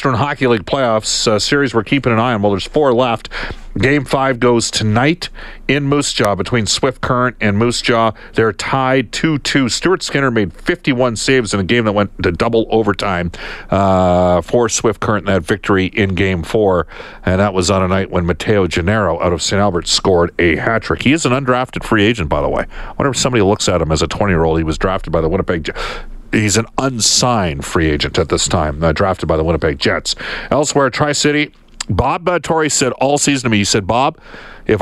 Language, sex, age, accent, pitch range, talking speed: English, male, 50-69, American, 95-135 Hz, 205 wpm